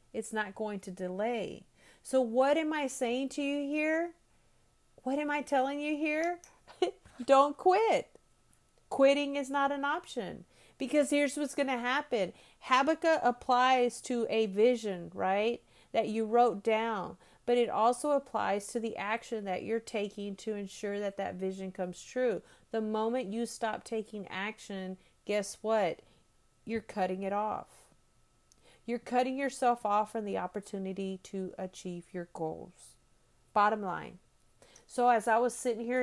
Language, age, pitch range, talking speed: English, 40-59, 195-245 Hz, 150 wpm